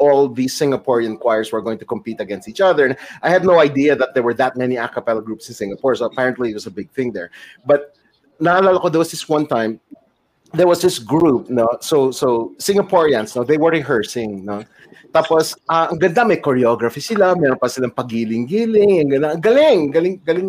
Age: 30-49